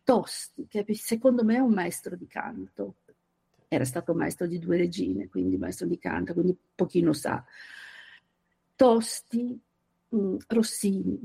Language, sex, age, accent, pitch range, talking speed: Italian, female, 50-69, native, 180-230 Hz, 130 wpm